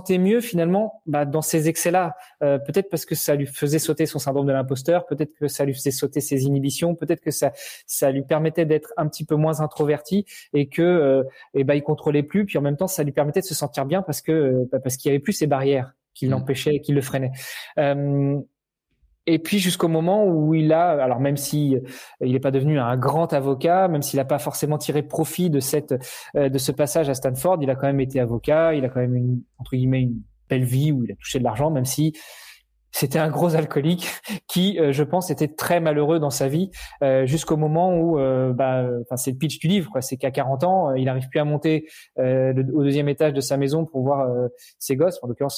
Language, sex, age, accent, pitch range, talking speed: French, male, 20-39, French, 135-160 Hz, 230 wpm